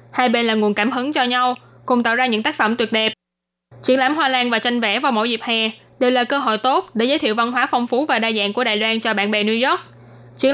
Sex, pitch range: female, 225-260 Hz